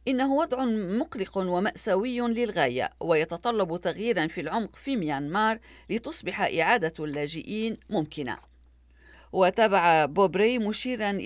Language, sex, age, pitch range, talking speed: Arabic, female, 50-69, 175-230 Hz, 95 wpm